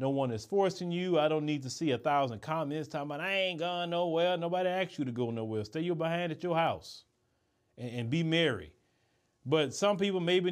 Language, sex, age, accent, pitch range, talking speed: English, male, 40-59, American, 145-180 Hz, 220 wpm